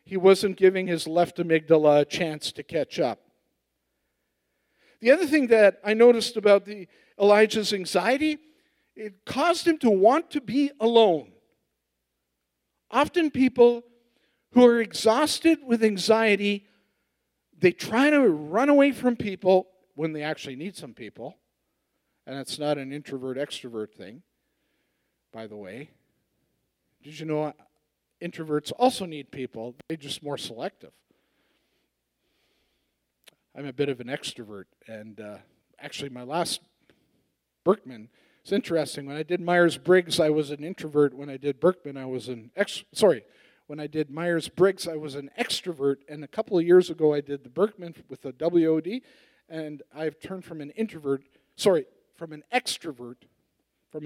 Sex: male